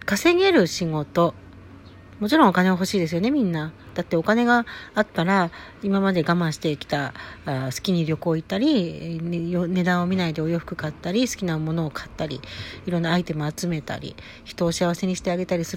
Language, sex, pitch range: Japanese, female, 160-210 Hz